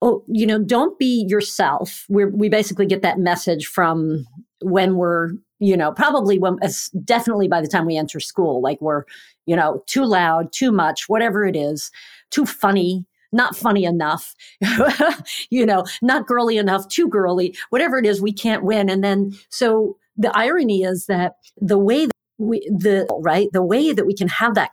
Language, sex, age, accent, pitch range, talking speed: English, female, 50-69, American, 175-215 Hz, 180 wpm